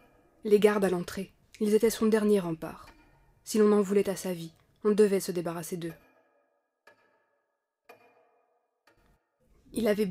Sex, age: female, 20-39